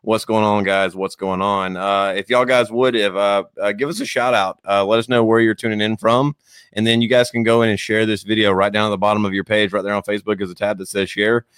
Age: 30-49